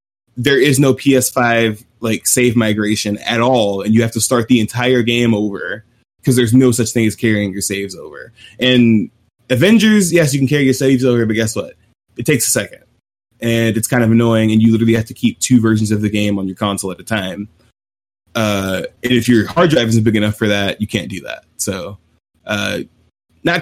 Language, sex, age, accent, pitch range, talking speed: English, male, 20-39, American, 110-130 Hz, 215 wpm